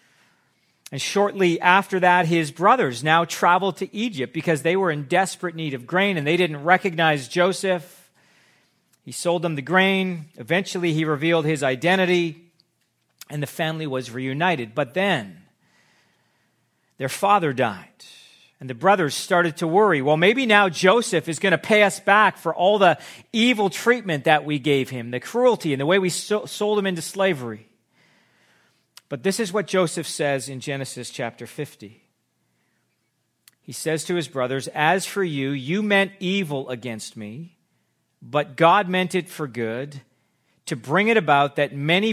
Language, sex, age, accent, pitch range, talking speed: English, male, 40-59, American, 140-185 Hz, 160 wpm